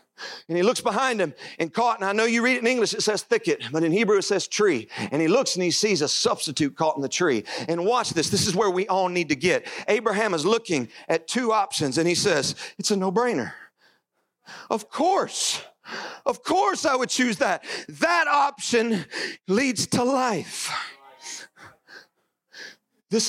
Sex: male